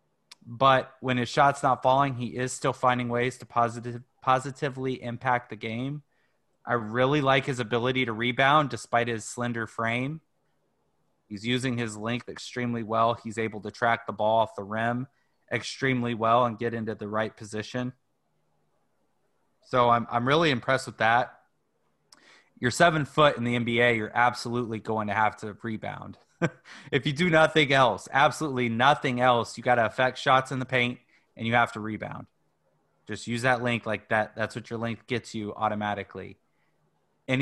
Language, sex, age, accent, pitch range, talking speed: English, male, 20-39, American, 110-130 Hz, 170 wpm